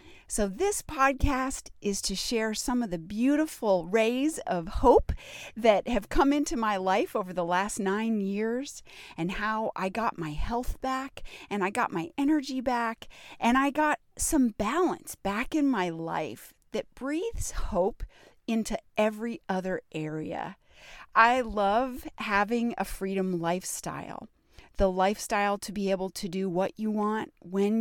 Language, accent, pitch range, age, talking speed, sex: English, American, 195-270 Hz, 40-59, 150 wpm, female